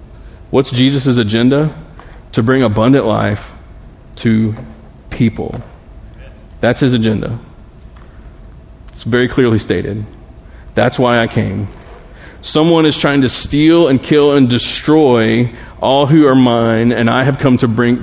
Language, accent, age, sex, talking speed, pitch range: English, American, 30-49, male, 130 wpm, 110-145 Hz